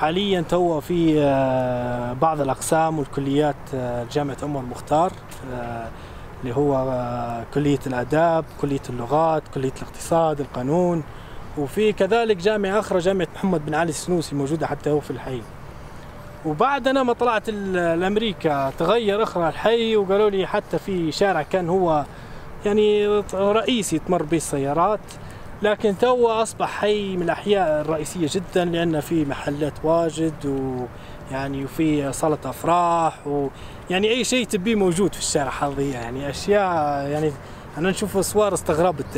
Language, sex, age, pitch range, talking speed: Arabic, male, 20-39, 135-190 Hz, 125 wpm